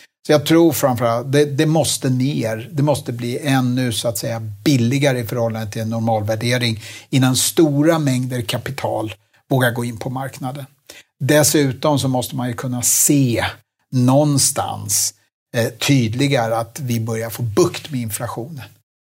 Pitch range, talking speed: 115-145 Hz, 155 wpm